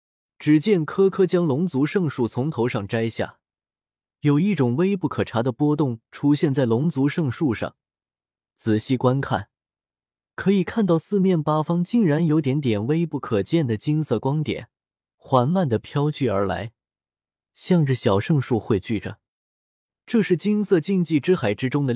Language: Chinese